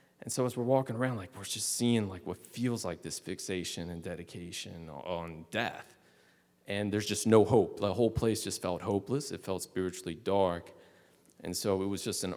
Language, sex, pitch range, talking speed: English, male, 90-120 Hz, 200 wpm